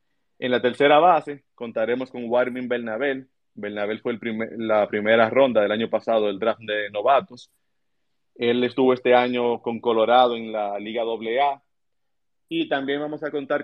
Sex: male